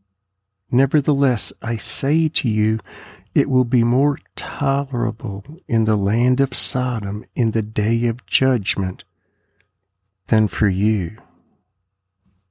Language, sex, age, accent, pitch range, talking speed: English, male, 50-69, American, 95-130 Hz, 110 wpm